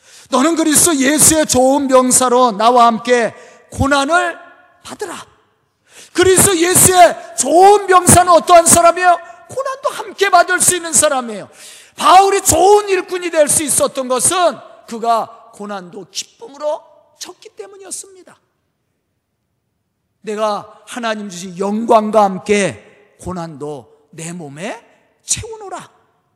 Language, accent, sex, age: Korean, native, male, 40-59